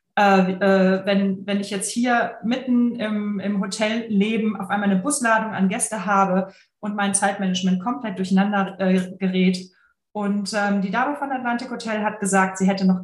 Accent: German